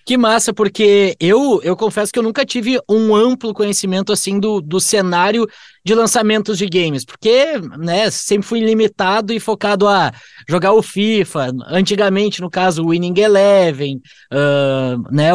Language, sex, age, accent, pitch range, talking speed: Portuguese, male, 20-39, Brazilian, 180-220 Hz, 155 wpm